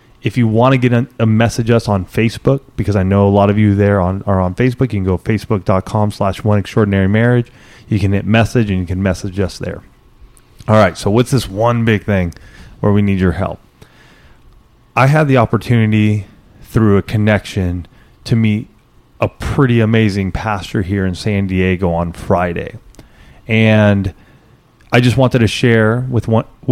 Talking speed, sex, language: 180 wpm, male, English